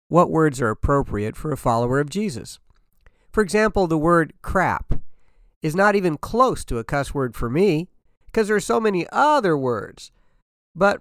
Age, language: 50-69, English